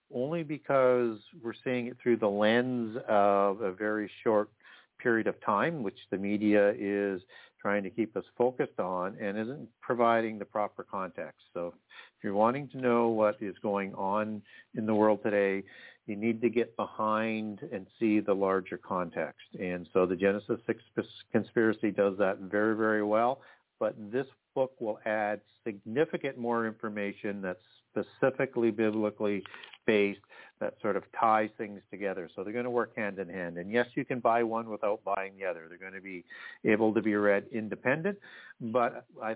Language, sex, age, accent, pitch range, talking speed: English, male, 50-69, American, 105-120 Hz, 170 wpm